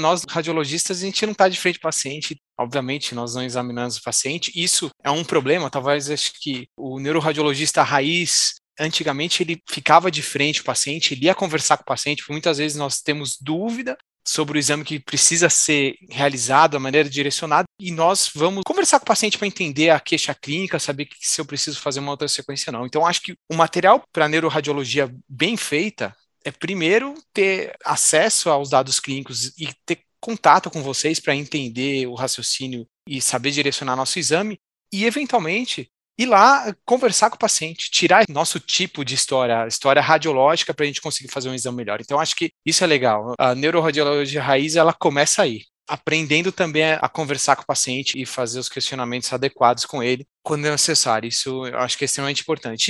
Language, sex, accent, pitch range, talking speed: Portuguese, male, Brazilian, 135-170 Hz, 190 wpm